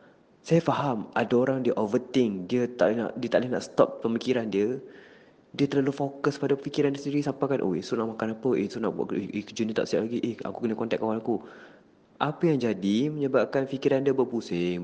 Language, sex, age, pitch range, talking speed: Malay, male, 20-39, 100-135 Hz, 220 wpm